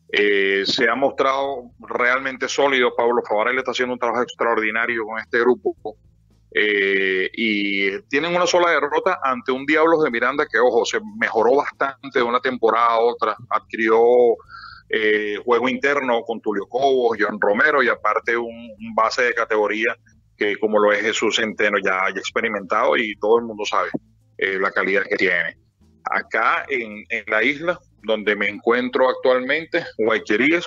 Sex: male